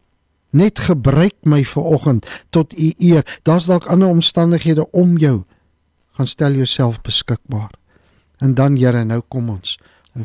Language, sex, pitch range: English, male, 110-145 Hz